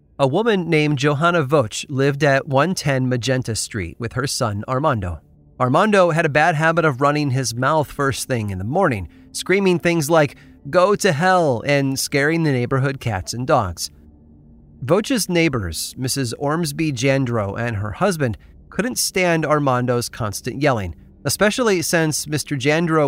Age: 30-49